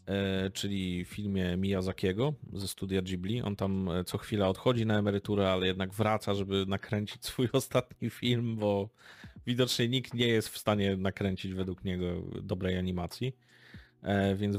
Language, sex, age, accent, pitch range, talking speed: Polish, male, 40-59, native, 95-120 Hz, 145 wpm